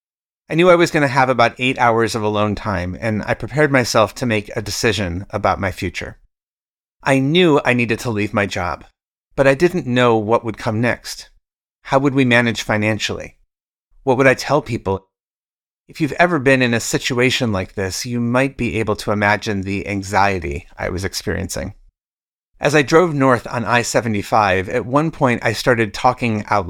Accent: American